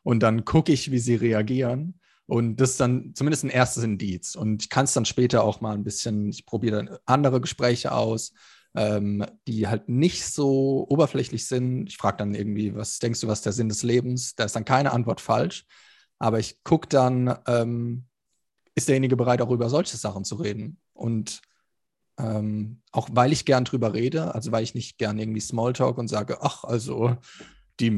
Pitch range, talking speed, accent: 110-130 Hz, 195 wpm, German